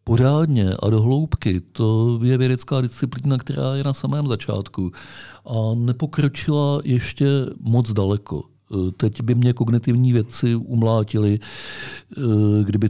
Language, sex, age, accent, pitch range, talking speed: Czech, male, 50-69, native, 105-125 Hz, 115 wpm